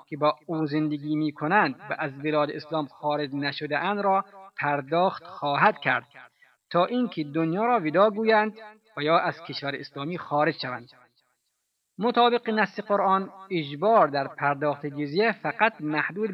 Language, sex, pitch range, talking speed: Persian, male, 150-205 Hz, 135 wpm